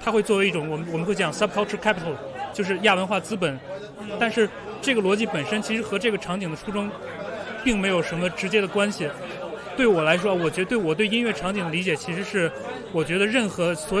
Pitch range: 170-215 Hz